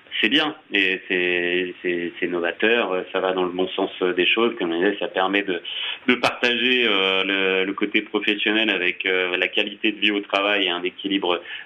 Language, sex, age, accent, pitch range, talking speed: French, male, 30-49, French, 95-110 Hz, 185 wpm